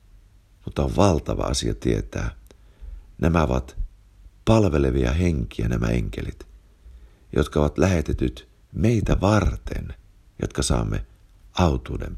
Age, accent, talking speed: 60-79, native, 95 wpm